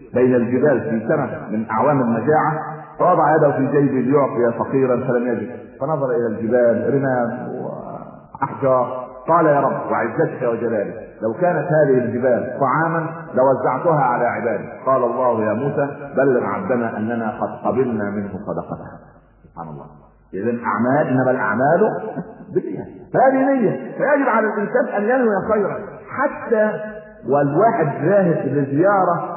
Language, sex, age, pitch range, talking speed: Arabic, male, 50-69, 120-175 Hz, 125 wpm